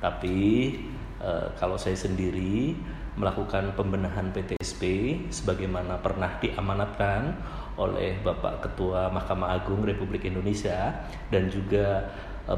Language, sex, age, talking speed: Indonesian, male, 30-49, 100 wpm